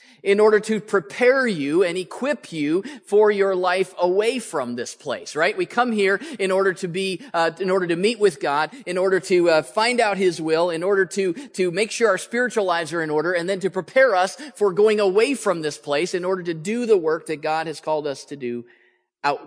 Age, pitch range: 30-49, 175-220 Hz